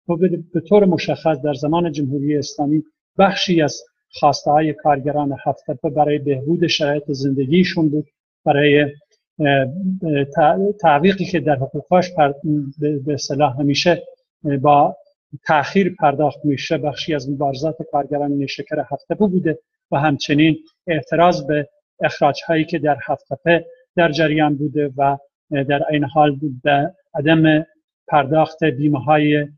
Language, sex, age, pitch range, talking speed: Persian, male, 50-69, 145-170 Hz, 120 wpm